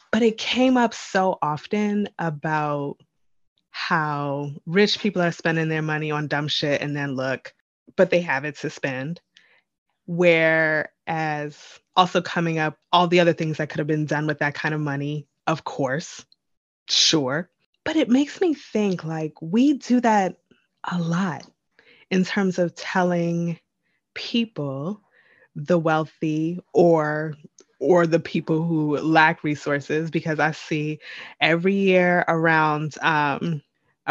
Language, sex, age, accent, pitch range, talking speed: English, female, 20-39, American, 155-185 Hz, 140 wpm